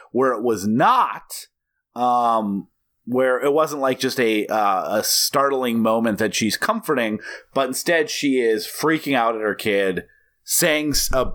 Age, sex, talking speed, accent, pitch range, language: 30-49, male, 155 wpm, American, 110-145 Hz, English